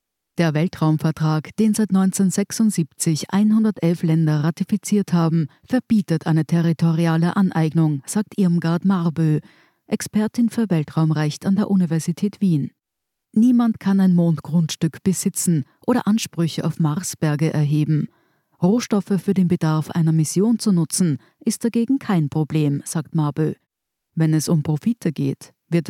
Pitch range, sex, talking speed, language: 155-205 Hz, female, 125 wpm, German